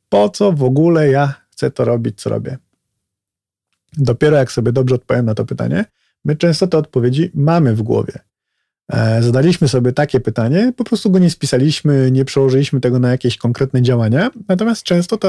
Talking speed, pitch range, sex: 175 wpm, 120-150 Hz, male